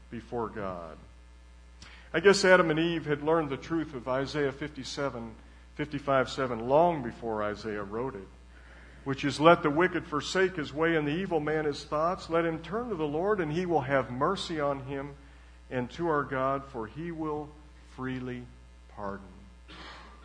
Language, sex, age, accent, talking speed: English, male, 50-69, American, 170 wpm